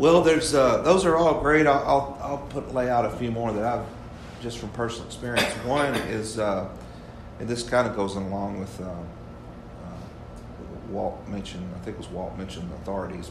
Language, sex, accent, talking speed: English, male, American, 195 wpm